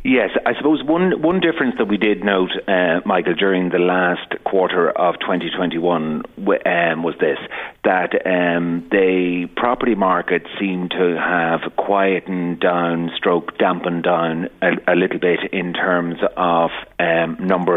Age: 40-59